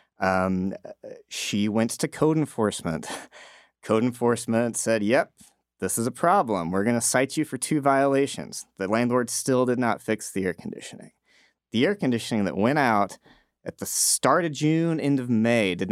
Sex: male